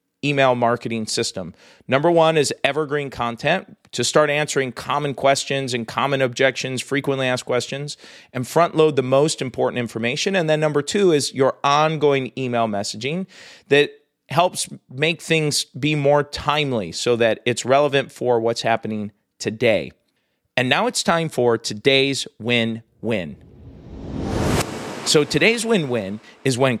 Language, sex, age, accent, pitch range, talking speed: English, male, 40-59, American, 120-155 Hz, 140 wpm